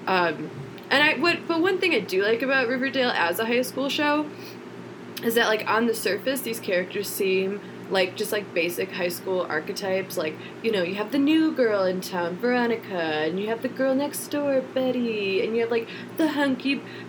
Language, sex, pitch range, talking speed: English, female, 185-250 Hz, 205 wpm